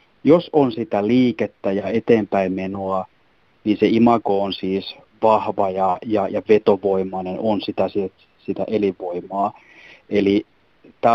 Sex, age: male, 30-49